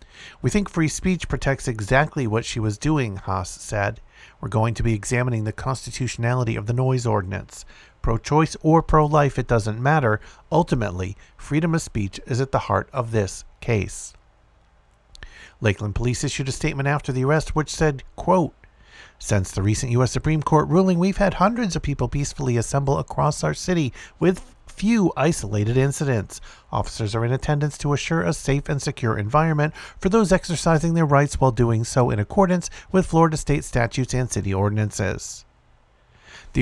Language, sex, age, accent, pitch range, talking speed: English, male, 50-69, American, 110-150 Hz, 165 wpm